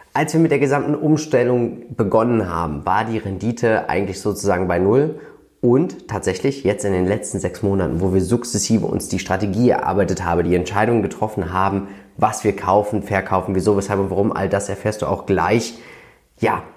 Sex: male